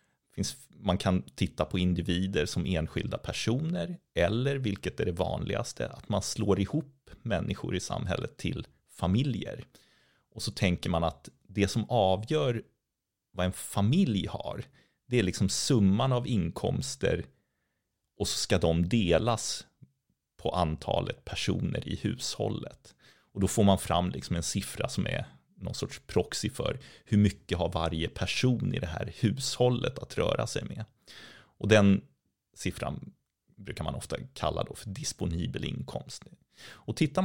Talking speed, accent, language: 145 wpm, native, Swedish